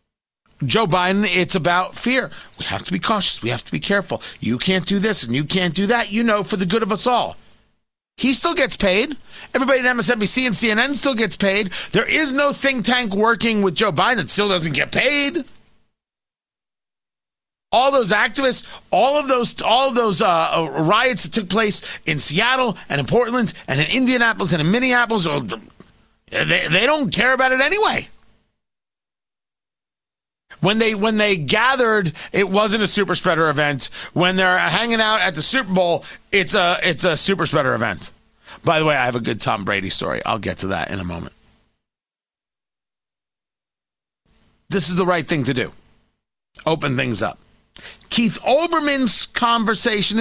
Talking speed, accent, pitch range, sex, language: 175 wpm, American, 180-245 Hz, male, English